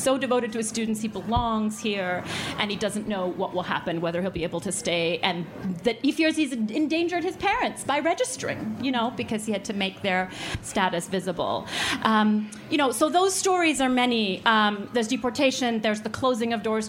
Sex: female